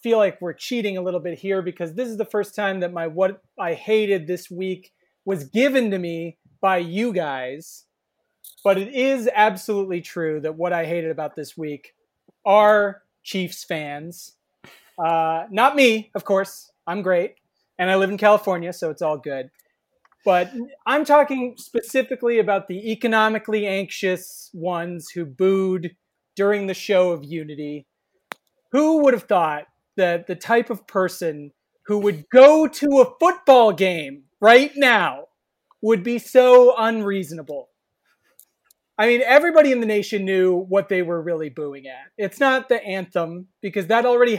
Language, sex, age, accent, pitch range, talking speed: English, male, 30-49, American, 180-240 Hz, 155 wpm